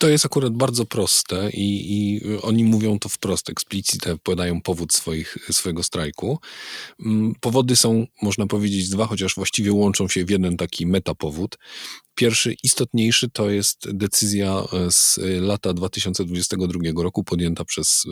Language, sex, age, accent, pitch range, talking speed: Polish, male, 40-59, native, 90-105 Hz, 135 wpm